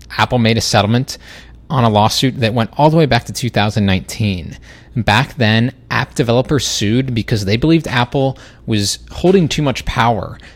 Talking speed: 165 wpm